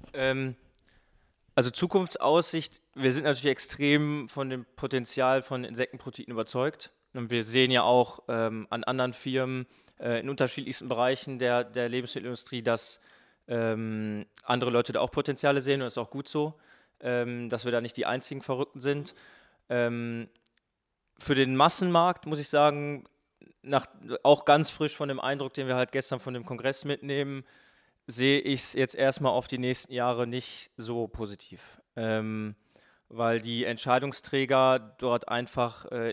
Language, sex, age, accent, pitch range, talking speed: German, male, 20-39, German, 120-140 Hz, 155 wpm